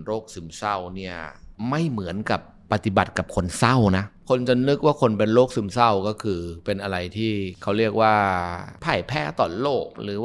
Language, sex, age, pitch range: Thai, male, 20-39, 90-110 Hz